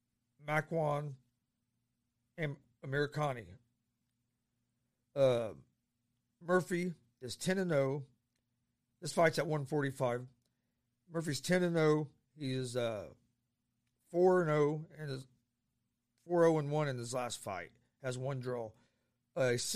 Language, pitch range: English, 120-155 Hz